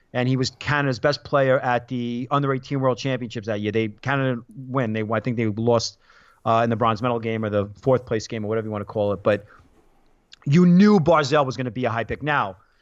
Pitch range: 120-145 Hz